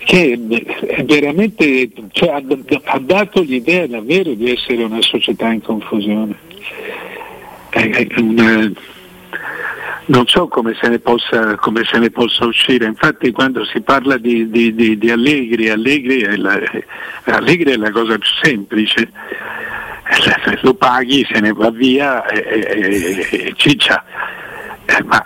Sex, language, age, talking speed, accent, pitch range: male, Italian, 60-79, 130 wpm, native, 115-160 Hz